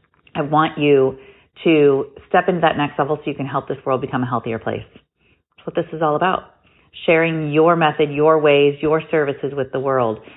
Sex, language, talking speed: female, English, 205 wpm